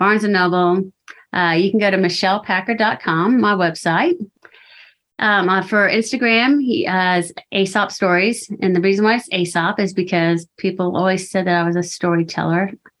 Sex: female